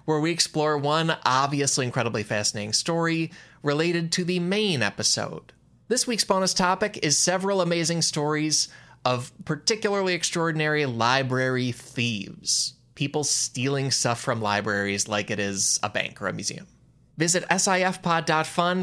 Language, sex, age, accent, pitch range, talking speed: English, male, 20-39, American, 130-185 Hz, 130 wpm